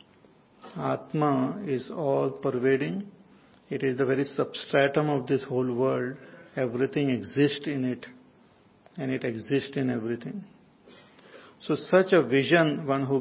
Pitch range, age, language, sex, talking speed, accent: 135-170 Hz, 50-69, English, male, 125 wpm, Indian